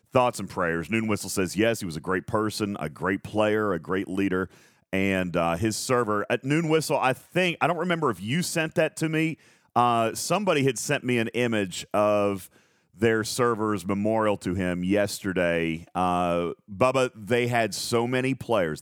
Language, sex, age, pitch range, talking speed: English, male, 40-59, 85-110 Hz, 180 wpm